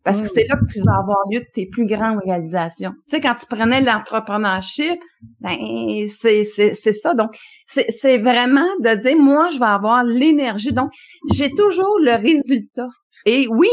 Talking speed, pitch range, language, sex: 190 wpm, 210-285 Hz, French, female